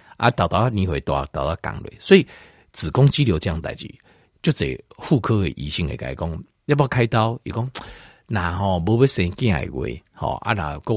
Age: 50-69